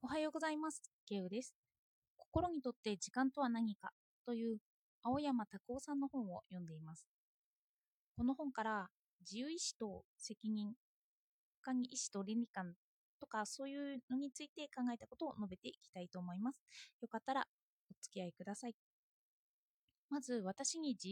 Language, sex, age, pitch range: Japanese, female, 20-39, 205-280 Hz